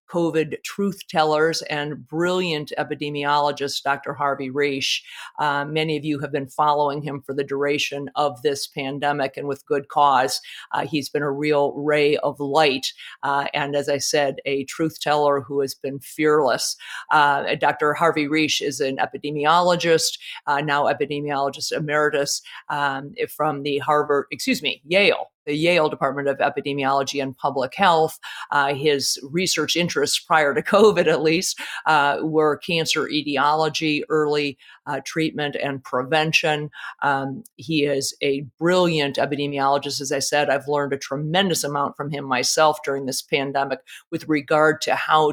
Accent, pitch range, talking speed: American, 140-155 Hz, 150 wpm